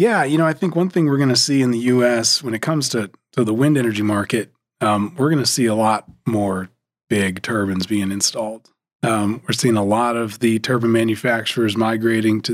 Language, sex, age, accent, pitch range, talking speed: English, male, 30-49, American, 110-130 Hz, 220 wpm